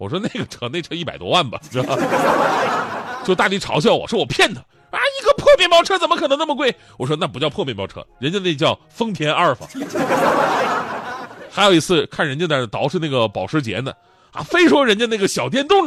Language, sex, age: Chinese, male, 30-49